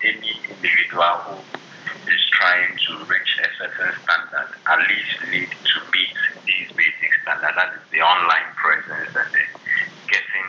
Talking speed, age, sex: 150 wpm, 50-69, male